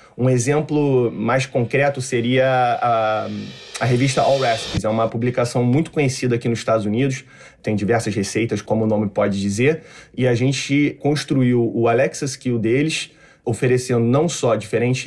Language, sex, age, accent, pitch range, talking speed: Portuguese, male, 20-39, Brazilian, 120-150 Hz, 155 wpm